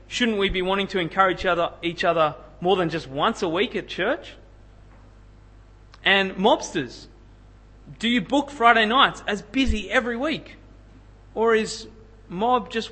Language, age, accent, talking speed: English, 30-49, Australian, 145 wpm